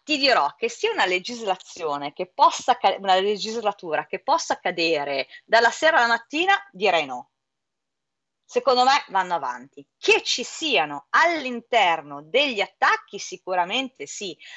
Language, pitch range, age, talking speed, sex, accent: Italian, 190-260 Hz, 30-49, 130 wpm, female, native